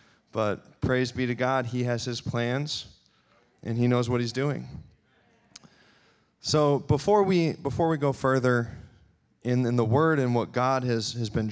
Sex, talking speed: male, 165 wpm